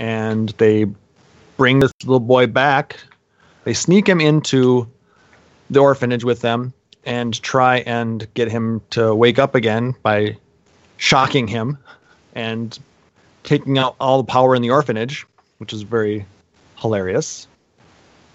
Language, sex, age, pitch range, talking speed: English, male, 30-49, 115-140 Hz, 130 wpm